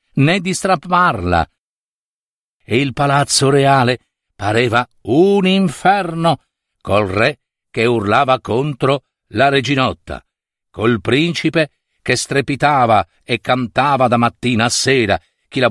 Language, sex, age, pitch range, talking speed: Italian, male, 50-69, 120-180 Hz, 110 wpm